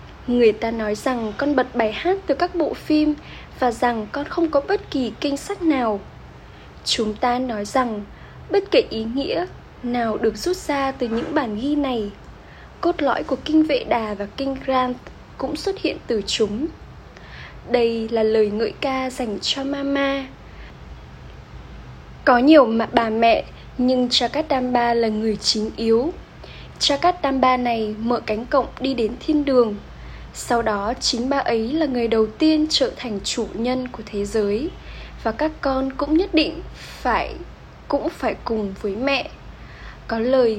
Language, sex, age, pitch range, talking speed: Vietnamese, female, 10-29, 225-285 Hz, 165 wpm